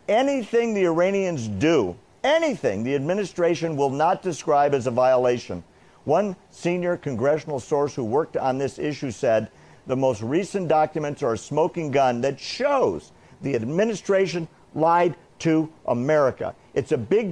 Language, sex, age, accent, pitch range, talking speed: English, male, 50-69, American, 125-165 Hz, 140 wpm